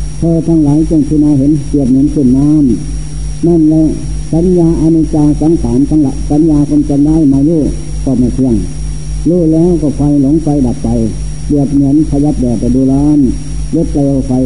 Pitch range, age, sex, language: 140-155 Hz, 60-79, male, Thai